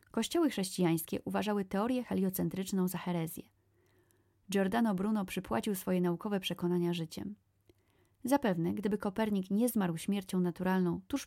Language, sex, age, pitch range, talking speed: Polish, female, 30-49, 170-225 Hz, 115 wpm